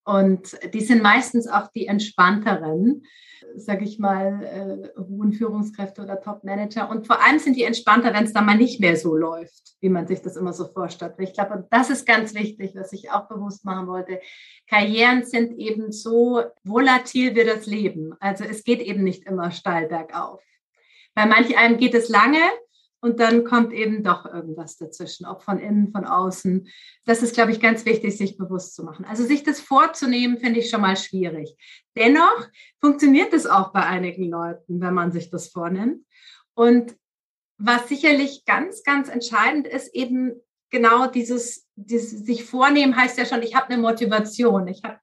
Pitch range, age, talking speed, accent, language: 195-245 Hz, 30-49, 180 wpm, German, German